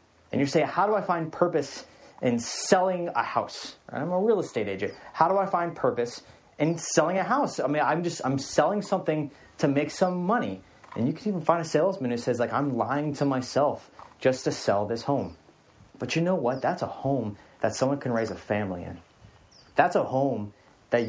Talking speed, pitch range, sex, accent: 215 wpm, 120-170 Hz, male, American